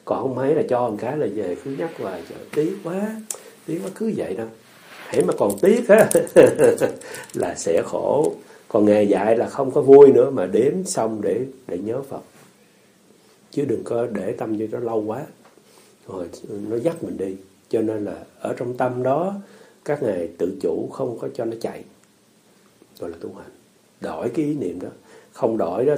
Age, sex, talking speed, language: 60-79, male, 195 wpm, Vietnamese